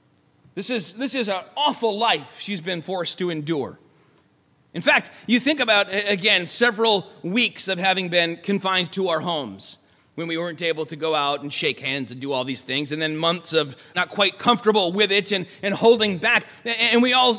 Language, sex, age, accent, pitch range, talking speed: English, male, 30-49, American, 185-250 Hz, 200 wpm